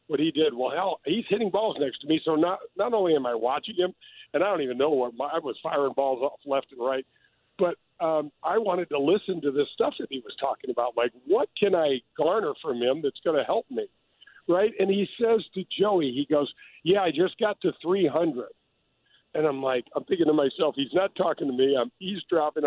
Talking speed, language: 230 wpm, English